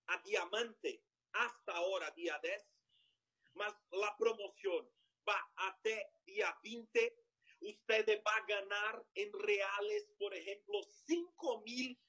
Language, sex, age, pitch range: Spanish, male, 40-59, 220-370 Hz